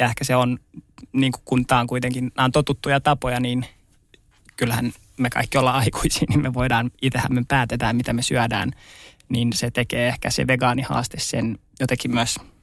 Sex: male